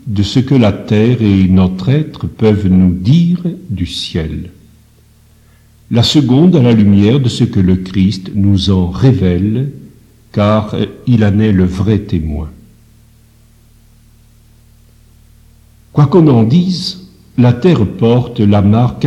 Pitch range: 95-120 Hz